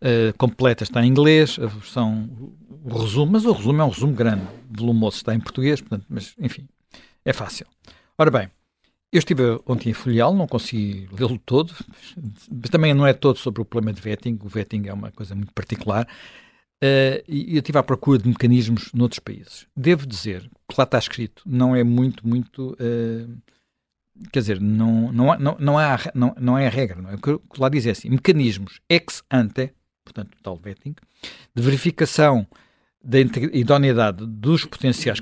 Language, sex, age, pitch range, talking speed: Portuguese, male, 50-69, 115-140 Hz, 180 wpm